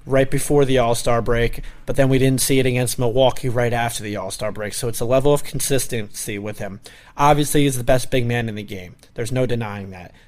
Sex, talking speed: male, 230 wpm